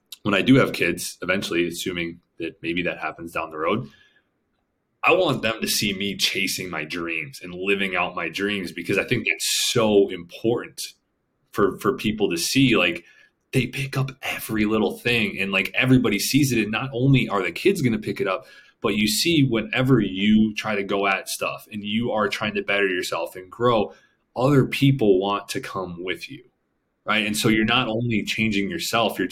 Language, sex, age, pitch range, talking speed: English, male, 20-39, 100-125 Hz, 200 wpm